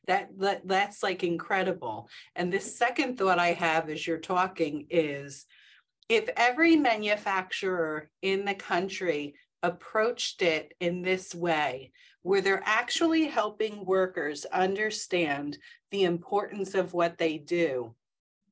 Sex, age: female, 40-59